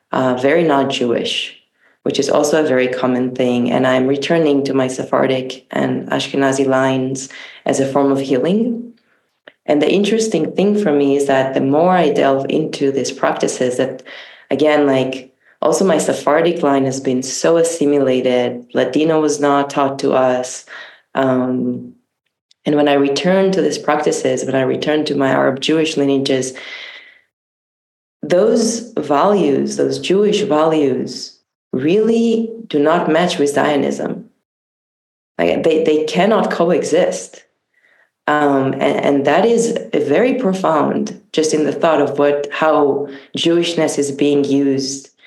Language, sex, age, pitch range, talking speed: English, female, 20-39, 130-155 Hz, 145 wpm